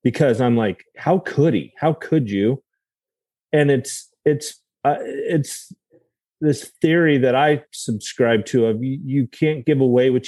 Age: 30-49